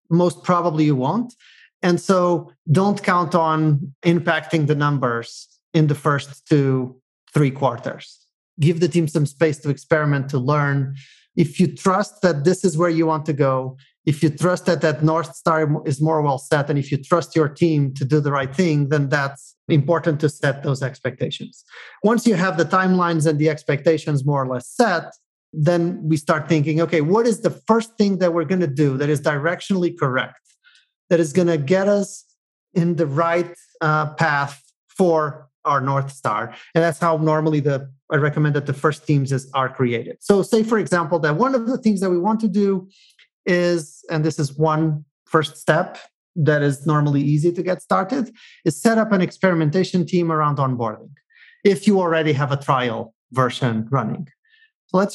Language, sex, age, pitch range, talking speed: English, male, 30-49, 145-180 Hz, 185 wpm